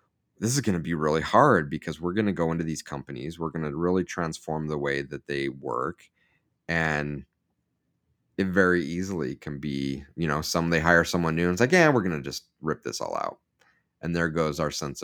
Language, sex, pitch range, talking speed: English, male, 75-90 Hz, 220 wpm